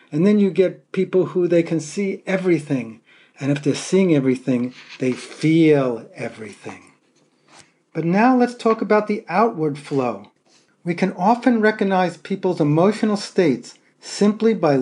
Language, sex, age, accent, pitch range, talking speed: English, male, 40-59, American, 140-195 Hz, 140 wpm